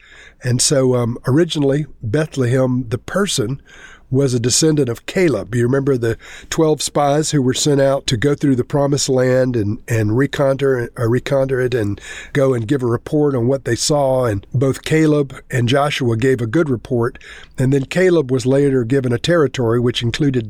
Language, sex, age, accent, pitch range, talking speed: English, male, 50-69, American, 125-150 Hz, 180 wpm